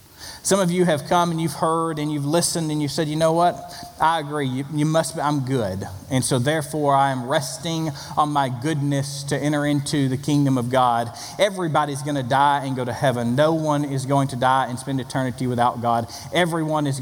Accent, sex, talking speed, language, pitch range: American, male, 220 wpm, English, 100-145 Hz